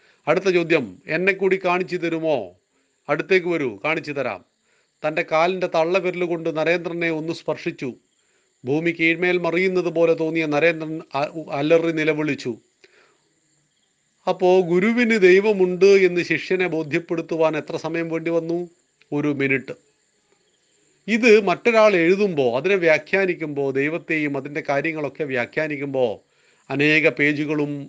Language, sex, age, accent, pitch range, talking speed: Malayalam, male, 40-59, native, 150-190 Hz, 100 wpm